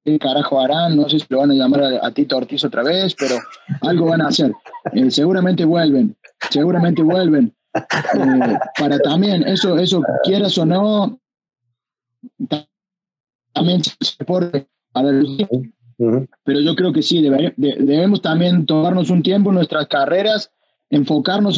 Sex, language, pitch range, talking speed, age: male, Spanish, 150-200 Hz, 140 wpm, 30-49